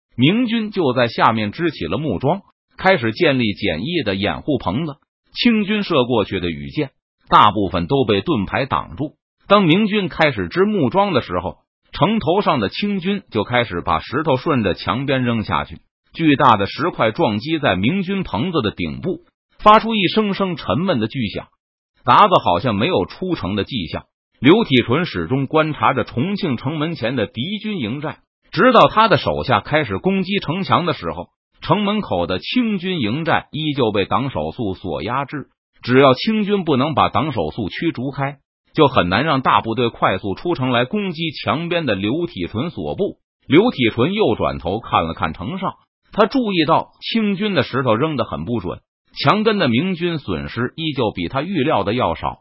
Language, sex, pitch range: Chinese, male, 120-195 Hz